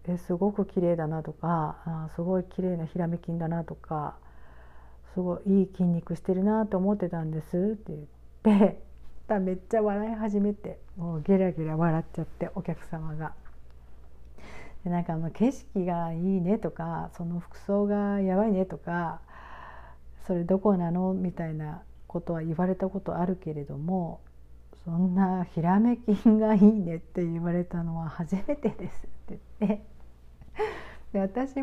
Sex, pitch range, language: female, 160-195 Hz, Japanese